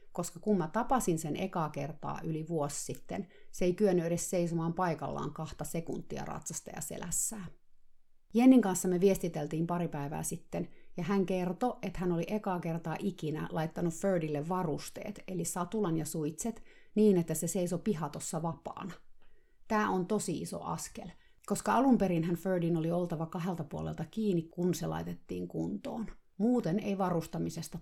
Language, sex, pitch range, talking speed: Finnish, female, 160-200 Hz, 150 wpm